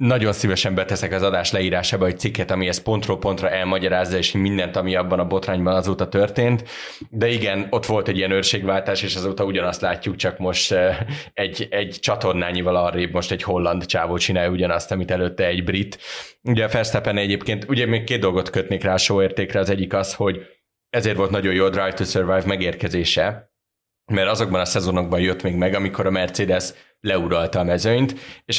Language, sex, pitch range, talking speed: Hungarian, male, 90-105 Hz, 180 wpm